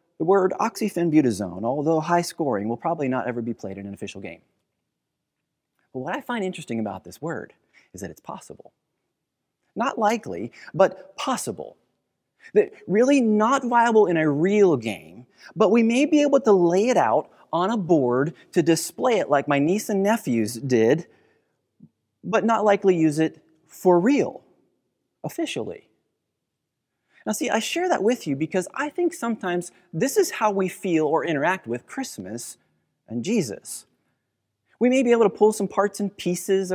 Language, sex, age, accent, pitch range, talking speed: English, male, 30-49, American, 150-220 Hz, 165 wpm